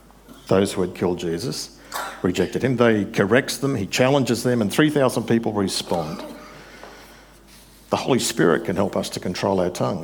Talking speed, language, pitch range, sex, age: 165 wpm, English, 100-125 Hz, male, 50-69